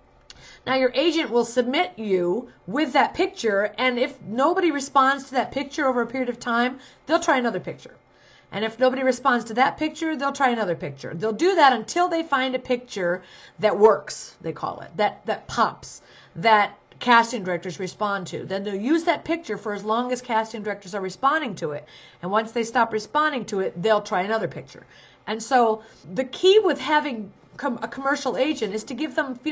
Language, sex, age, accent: English, female, 50-69, American